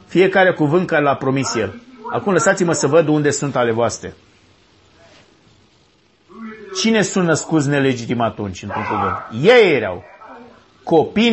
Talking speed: 115 wpm